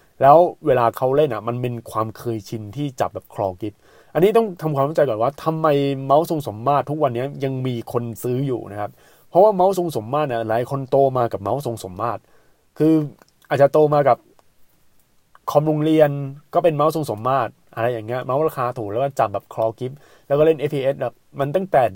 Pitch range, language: 115-150 Hz, Thai